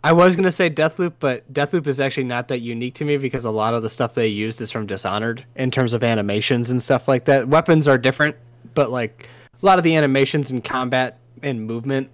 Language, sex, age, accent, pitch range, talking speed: English, male, 20-39, American, 120-145 Hz, 230 wpm